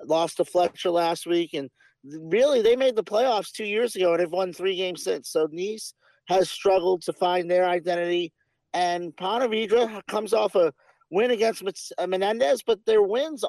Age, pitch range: 50-69, 175-220 Hz